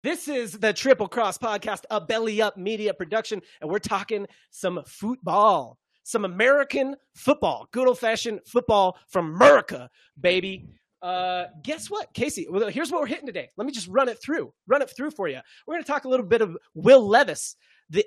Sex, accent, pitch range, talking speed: male, American, 180-245 Hz, 185 wpm